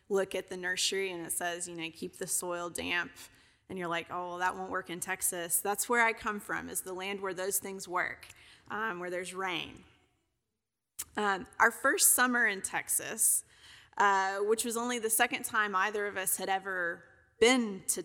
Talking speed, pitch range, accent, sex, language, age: 195 wpm, 185-220 Hz, American, female, English, 20-39